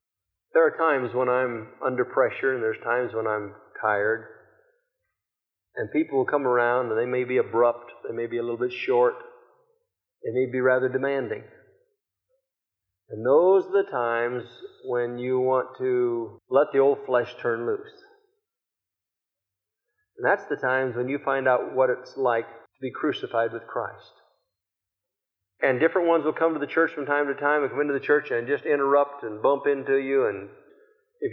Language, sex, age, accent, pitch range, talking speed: English, male, 50-69, American, 125-165 Hz, 175 wpm